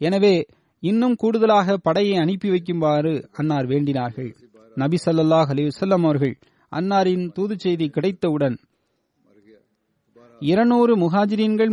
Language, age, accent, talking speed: Tamil, 30-49, native, 65 wpm